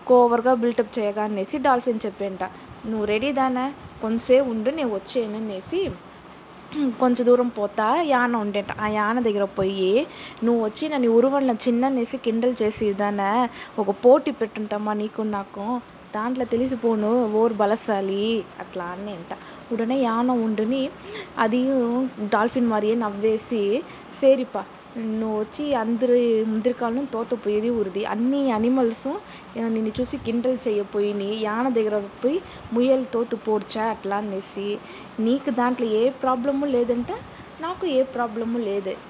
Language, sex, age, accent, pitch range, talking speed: Telugu, female, 20-39, native, 210-250 Hz, 115 wpm